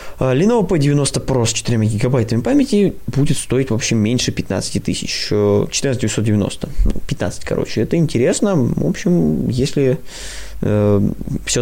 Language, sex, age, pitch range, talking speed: Russian, male, 20-39, 105-130 Hz, 130 wpm